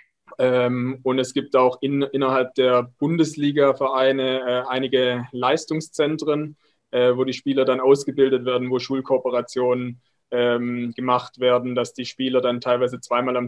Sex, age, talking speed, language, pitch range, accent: male, 20-39, 140 wpm, German, 125-135 Hz, German